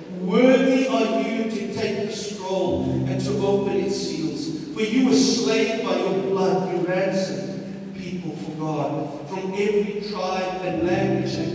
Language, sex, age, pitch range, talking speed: English, male, 50-69, 145-200 Hz, 155 wpm